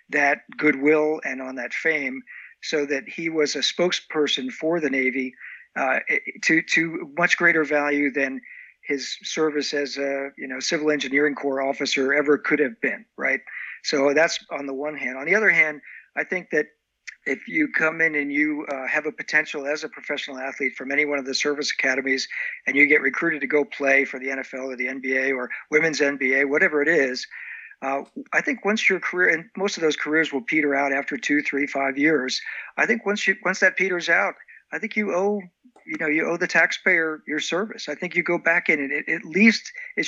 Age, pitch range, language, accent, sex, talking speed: 50-69, 140-165 Hz, English, American, male, 210 wpm